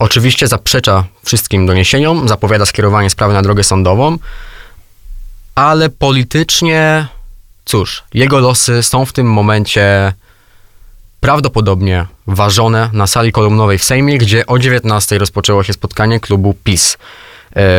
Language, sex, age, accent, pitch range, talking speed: Polish, male, 20-39, native, 100-120 Hz, 115 wpm